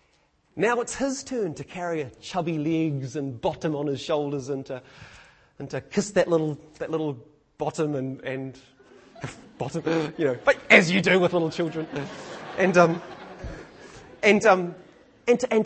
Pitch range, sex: 140-200 Hz, male